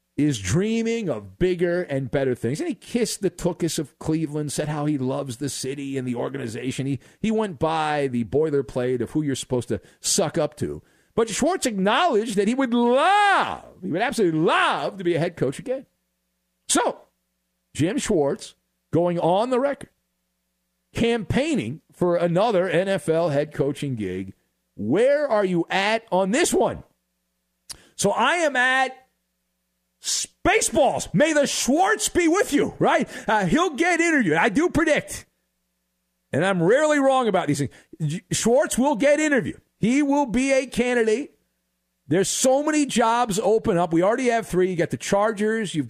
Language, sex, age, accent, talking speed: English, male, 50-69, American, 165 wpm